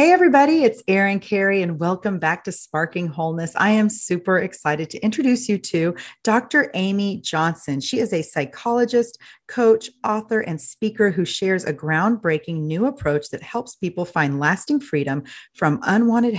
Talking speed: 160 wpm